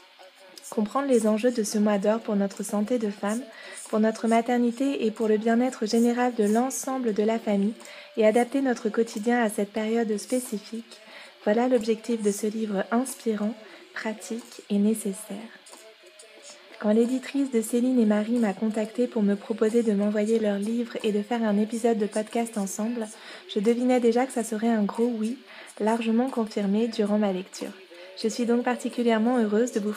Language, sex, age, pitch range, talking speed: French, female, 20-39, 210-245 Hz, 170 wpm